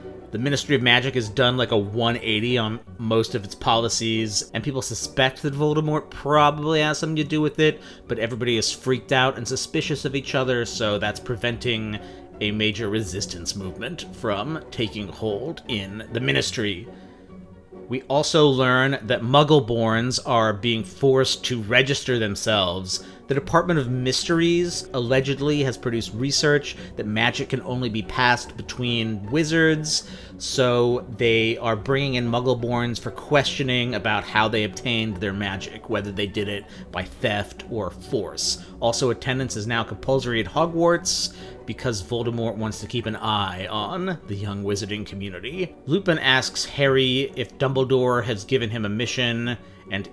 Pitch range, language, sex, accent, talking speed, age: 105-130 Hz, English, male, American, 155 wpm, 30-49